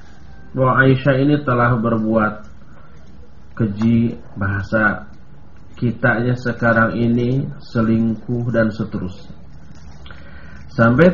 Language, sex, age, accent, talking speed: English, male, 40-59, Indonesian, 80 wpm